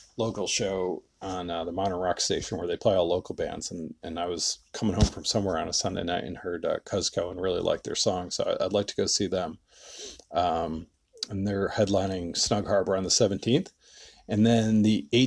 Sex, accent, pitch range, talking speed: male, American, 95-110 Hz, 220 wpm